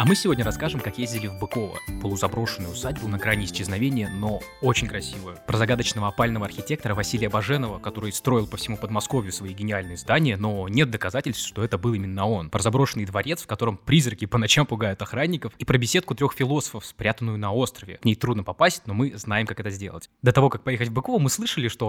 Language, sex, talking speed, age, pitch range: Russian, male, 205 wpm, 20-39, 105-135 Hz